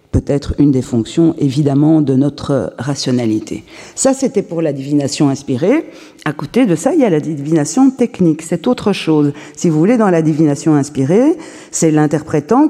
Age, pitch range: 40-59, 140-185 Hz